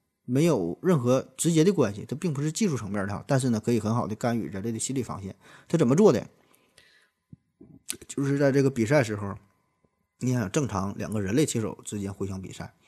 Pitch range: 110-150 Hz